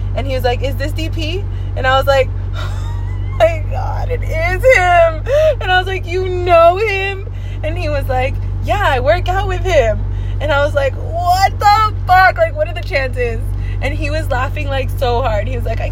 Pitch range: 95-100 Hz